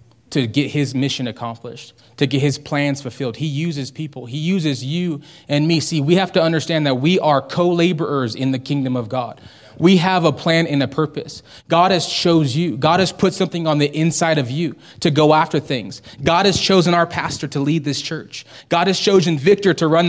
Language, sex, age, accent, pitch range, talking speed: English, male, 20-39, American, 140-180 Hz, 210 wpm